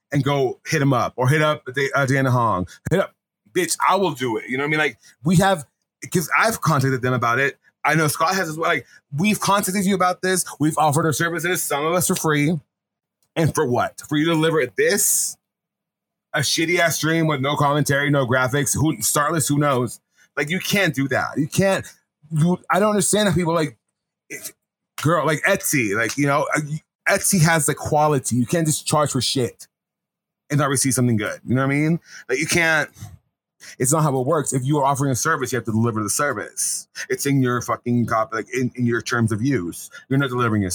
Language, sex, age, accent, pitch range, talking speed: English, male, 30-49, American, 125-165 Hz, 225 wpm